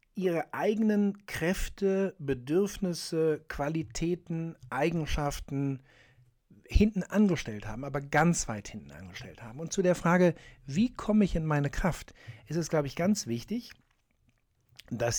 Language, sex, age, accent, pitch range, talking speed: German, male, 60-79, German, 125-170 Hz, 125 wpm